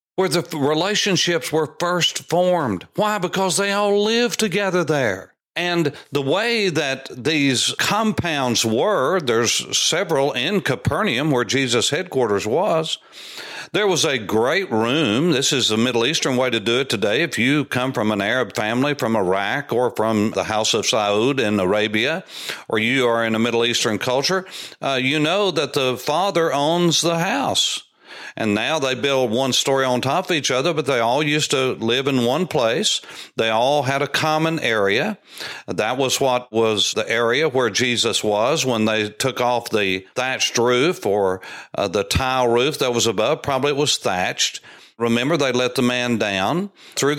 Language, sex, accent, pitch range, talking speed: English, male, American, 115-170 Hz, 175 wpm